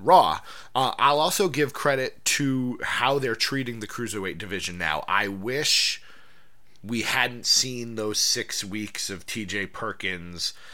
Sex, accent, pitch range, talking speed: male, American, 100-130 Hz, 140 wpm